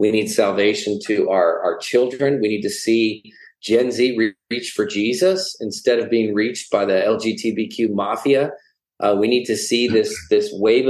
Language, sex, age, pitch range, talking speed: English, male, 40-59, 105-135 Hz, 180 wpm